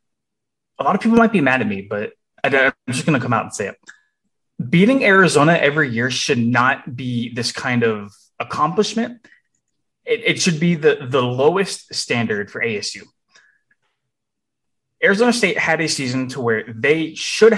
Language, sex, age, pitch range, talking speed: English, male, 20-39, 120-190 Hz, 165 wpm